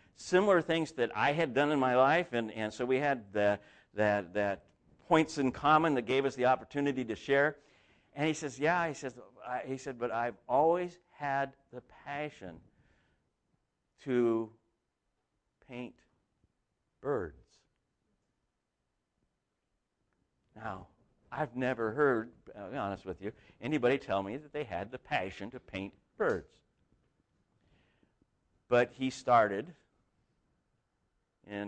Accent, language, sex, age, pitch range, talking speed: American, English, male, 60-79, 105-140 Hz, 130 wpm